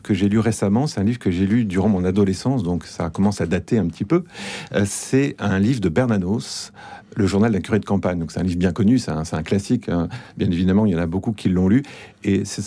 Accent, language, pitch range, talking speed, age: French, French, 95-115 Hz, 265 wpm, 40-59